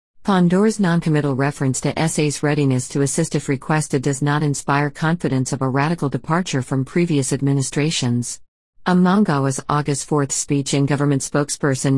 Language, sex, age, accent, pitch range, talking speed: English, female, 50-69, American, 135-155 Hz, 140 wpm